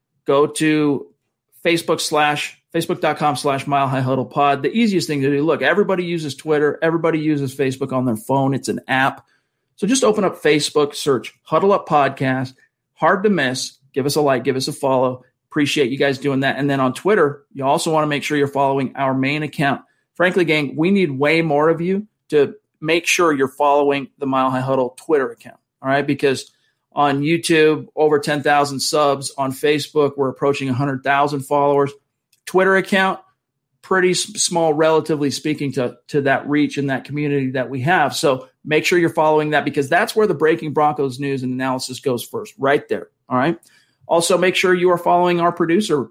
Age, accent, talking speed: 40-59, American, 190 wpm